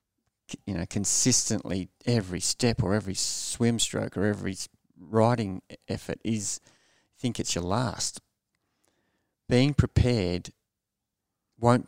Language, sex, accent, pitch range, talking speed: English, male, Australian, 95-115 Hz, 105 wpm